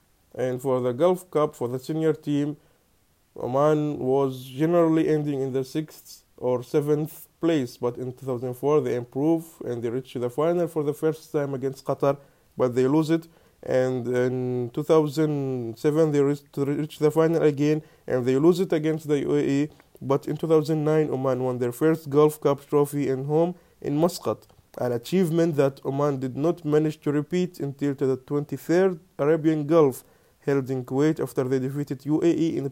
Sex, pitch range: male, 135-155 Hz